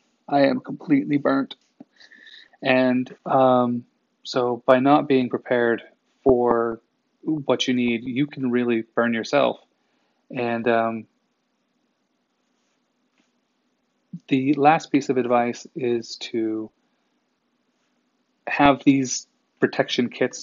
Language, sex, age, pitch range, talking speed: English, male, 30-49, 120-155 Hz, 95 wpm